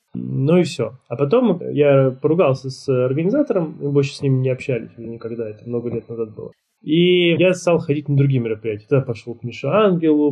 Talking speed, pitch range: 190 wpm, 120-145 Hz